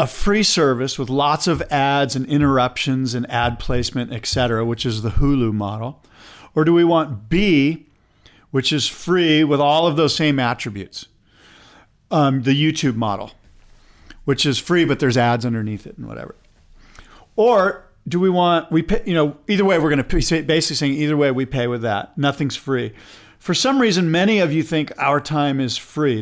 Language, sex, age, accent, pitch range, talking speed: English, male, 40-59, American, 125-165 Hz, 185 wpm